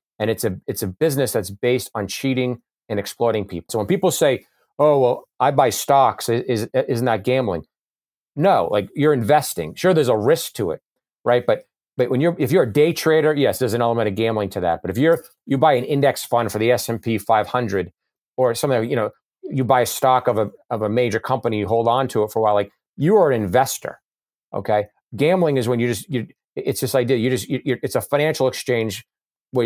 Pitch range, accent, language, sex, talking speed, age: 110-135 Hz, American, English, male, 230 wpm, 40-59